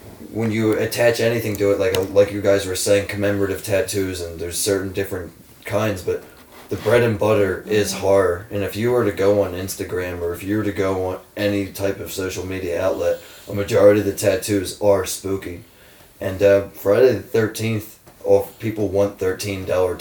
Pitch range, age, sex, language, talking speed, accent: 95-110 Hz, 20-39, male, English, 190 wpm, American